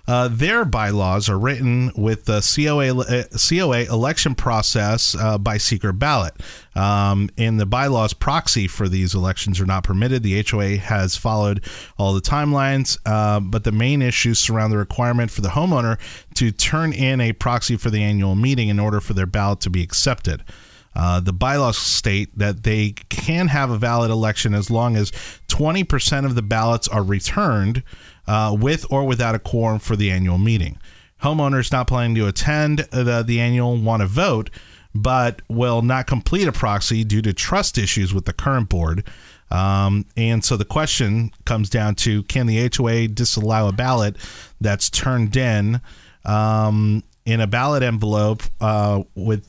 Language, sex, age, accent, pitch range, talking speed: English, male, 30-49, American, 100-125 Hz, 170 wpm